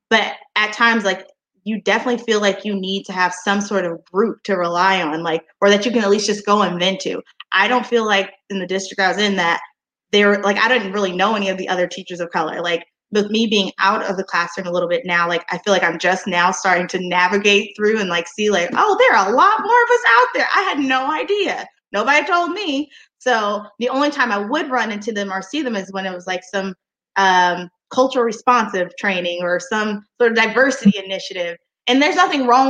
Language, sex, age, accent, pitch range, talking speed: English, female, 20-39, American, 185-230 Hz, 245 wpm